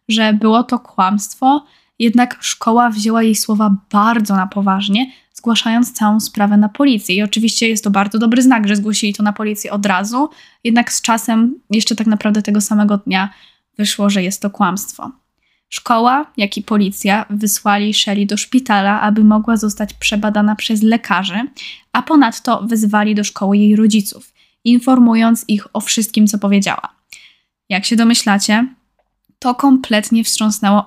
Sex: female